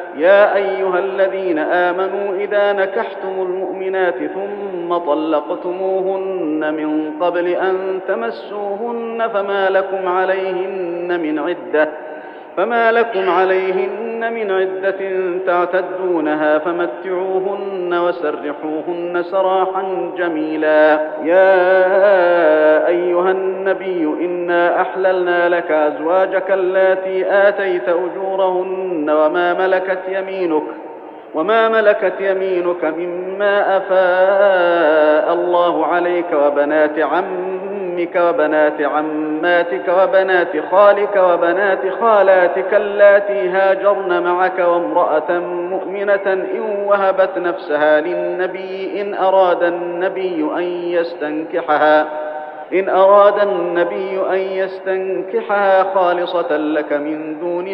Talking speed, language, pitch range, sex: 85 wpm, Arabic, 175-190 Hz, male